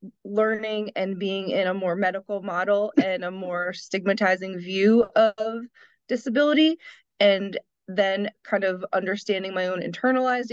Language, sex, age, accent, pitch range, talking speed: English, female, 20-39, American, 185-215 Hz, 130 wpm